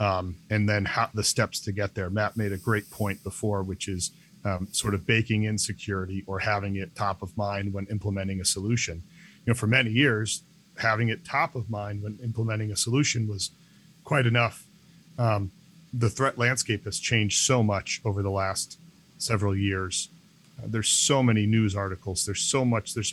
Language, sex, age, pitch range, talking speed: English, male, 40-59, 100-120 Hz, 190 wpm